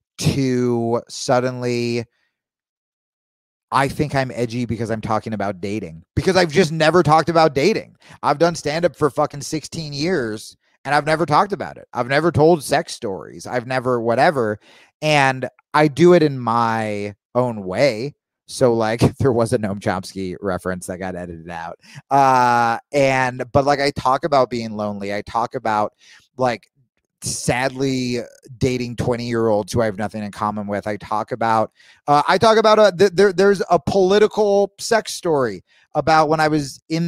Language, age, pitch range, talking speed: English, 30-49, 115-160 Hz, 170 wpm